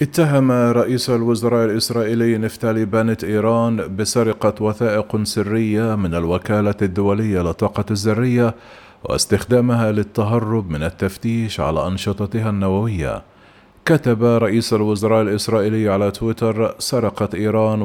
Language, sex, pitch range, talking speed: Arabic, male, 100-120 Hz, 100 wpm